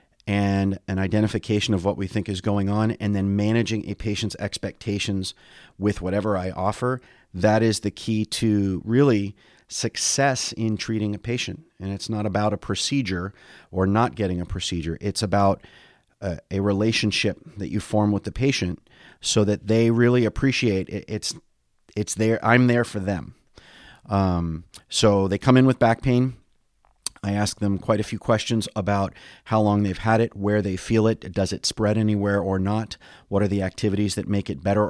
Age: 30-49